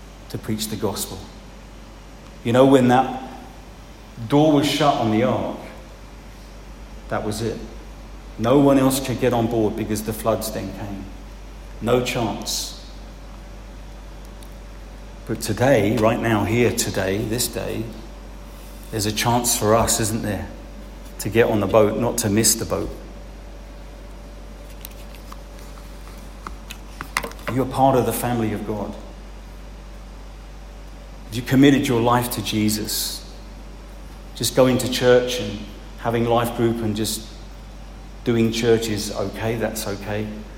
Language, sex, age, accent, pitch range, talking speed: English, male, 40-59, British, 105-125 Hz, 125 wpm